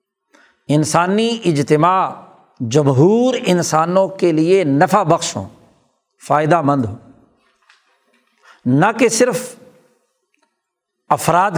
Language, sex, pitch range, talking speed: Urdu, male, 155-215 Hz, 85 wpm